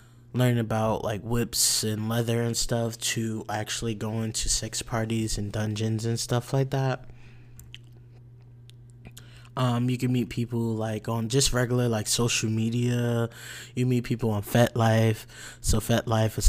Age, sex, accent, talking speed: 20-39, male, American, 145 wpm